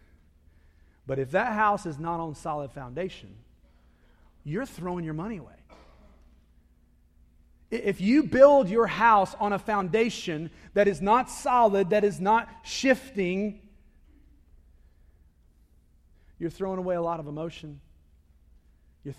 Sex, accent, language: male, American, English